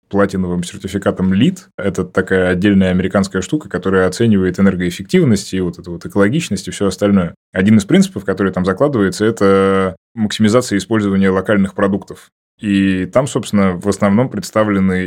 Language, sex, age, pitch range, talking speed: Russian, male, 20-39, 95-105 Hz, 145 wpm